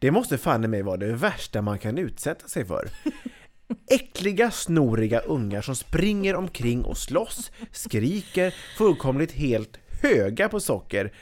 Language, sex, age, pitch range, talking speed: English, male, 30-49, 115-185 Hz, 140 wpm